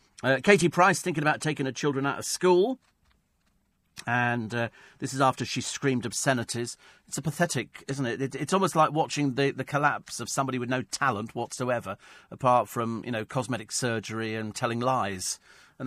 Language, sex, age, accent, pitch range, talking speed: English, male, 40-59, British, 120-160 Hz, 180 wpm